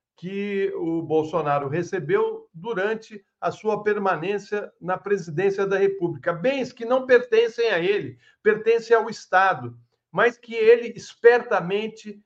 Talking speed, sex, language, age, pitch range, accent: 120 wpm, male, Portuguese, 60-79, 140-215 Hz, Brazilian